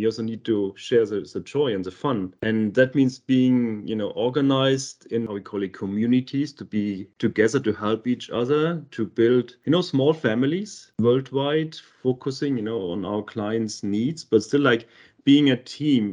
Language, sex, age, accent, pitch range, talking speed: English, male, 30-49, German, 110-135 Hz, 190 wpm